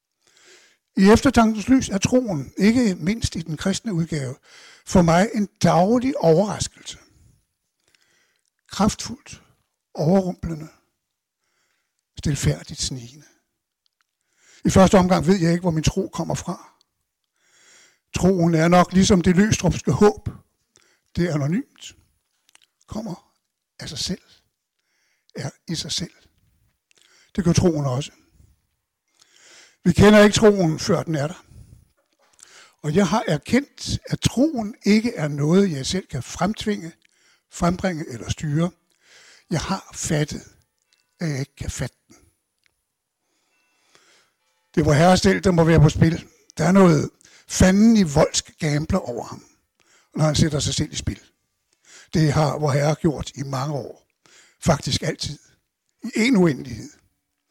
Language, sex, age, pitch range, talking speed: Danish, male, 60-79, 155-205 Hz, 130 wpm